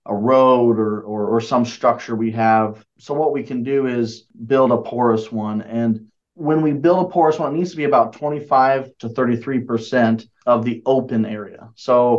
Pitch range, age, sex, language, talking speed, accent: 120-135 Hz, 30-49, male, English, 195 wpm, American